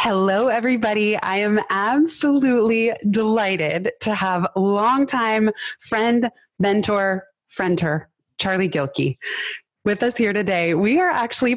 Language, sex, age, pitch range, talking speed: English, female, 20-39, 185-235 Hz, 110 wpm